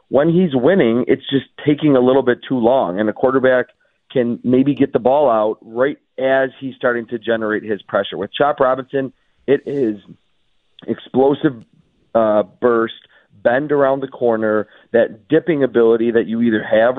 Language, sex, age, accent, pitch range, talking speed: English, male, 40-59, American, 105-130 Hz, 165 wpm